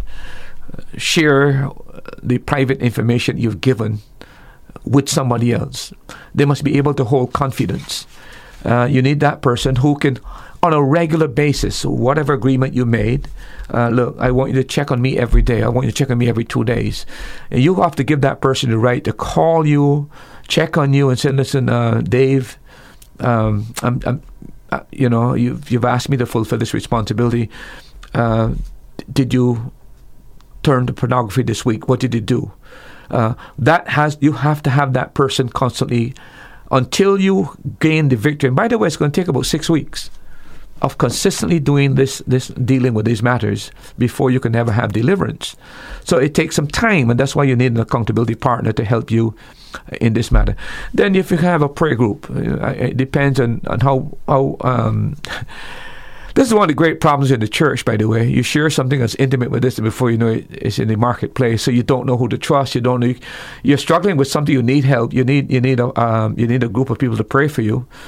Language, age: English, 50-69